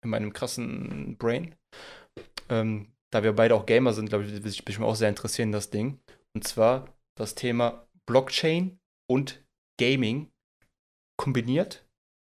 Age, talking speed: 20-39, 140 wpm